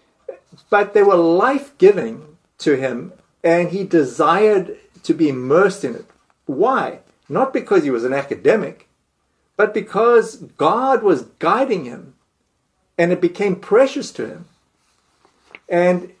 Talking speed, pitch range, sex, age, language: 125 wpm, 170-270 Hz, male, 50-69, English